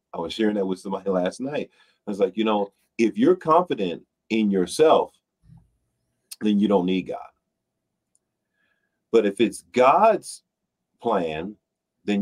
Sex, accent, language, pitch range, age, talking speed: male, American, English, 95-145 Hz, 40-59, 140 wpm